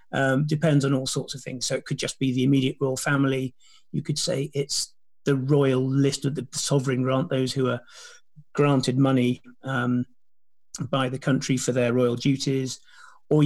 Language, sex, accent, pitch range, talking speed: English, male, British, 130-155 Hz, 185 wpm